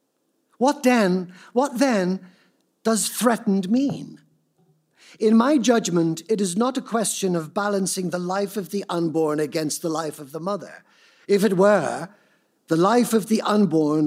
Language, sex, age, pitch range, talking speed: English, male, 60-79, 175-230 Hz, 155 wpm